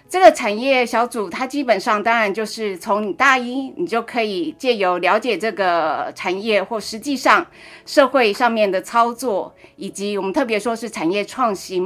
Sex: female